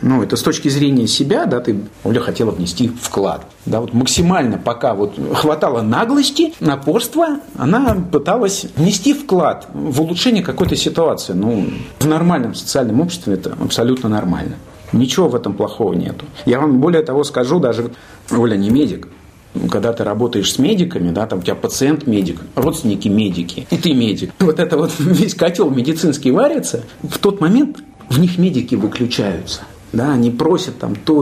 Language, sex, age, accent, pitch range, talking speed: Russian, male, 50-69, native, 105-155 Hz, 165 wpm